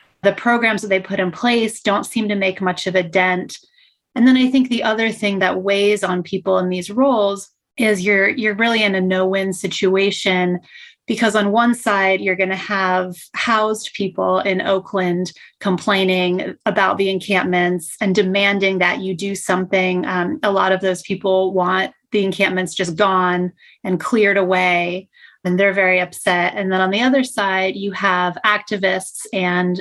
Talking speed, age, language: 175 wpm, 30-49, English